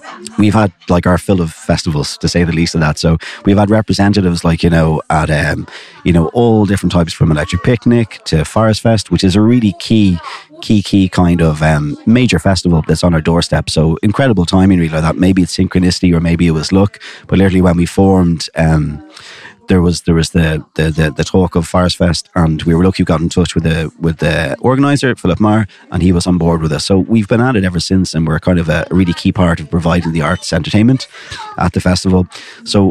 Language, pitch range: English, 85-95 Hz